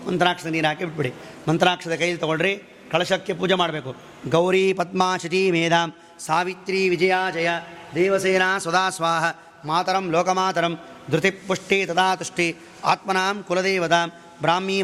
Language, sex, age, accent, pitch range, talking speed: Kannada, male, 30-49, native, 165-185 Hz, 100 wpm